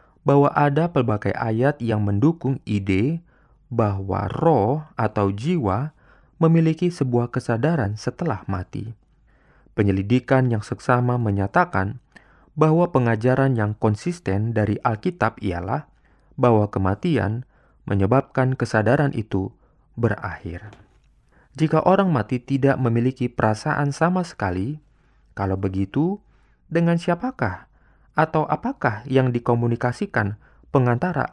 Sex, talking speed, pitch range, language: male, 95 wpm, 105-145 Hz, Indonesian